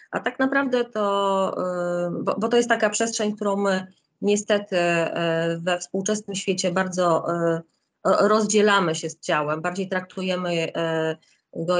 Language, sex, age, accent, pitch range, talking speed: Polish, female, 30-49, native, 165-205 Hz, 115 wpm